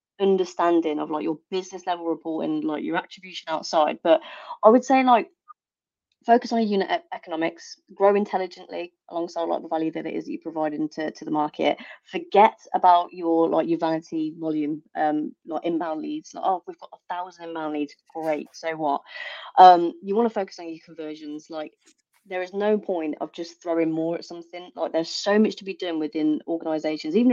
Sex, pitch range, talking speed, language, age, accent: female, 165-205 Hz, 190 wpm, English, 30-49, British